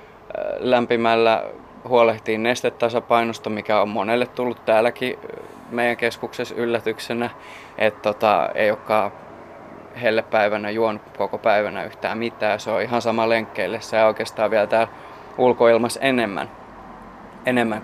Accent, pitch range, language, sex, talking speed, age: native, 110-120 Hz, Finnish, male, 120 wpm, 20-39